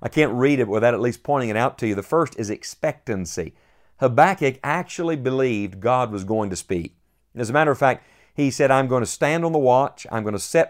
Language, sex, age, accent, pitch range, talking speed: English, male, 50-69, American, 110-135 Hz, 235 wpm